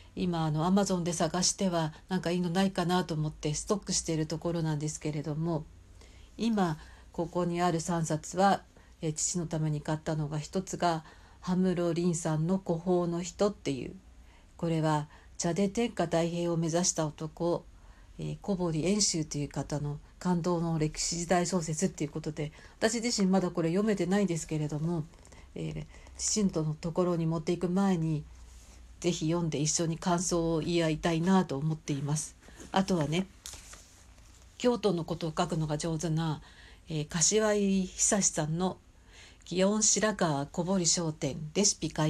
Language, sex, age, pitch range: Japanese, female, 50-69, 150-180 Hz